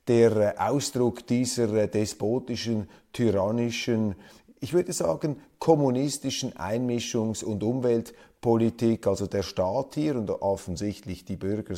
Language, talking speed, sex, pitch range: German, 105 wpm, male, 100-120 Hz